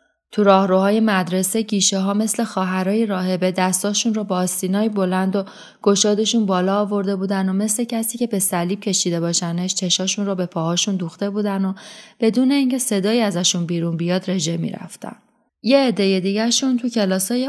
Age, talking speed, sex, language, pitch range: 30-49, 165 wpm, female, Persian, 185-225 Hz